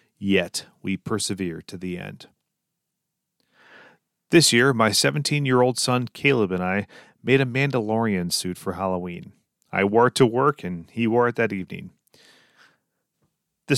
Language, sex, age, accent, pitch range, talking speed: English, male, 40-59, American, 95-125 Hz, 140 wpm